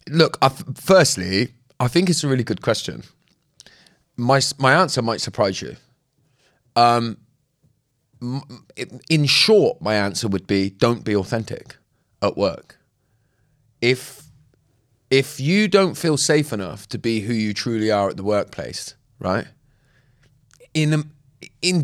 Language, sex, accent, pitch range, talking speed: English, male, British, 100-135 Hz, 140 wpm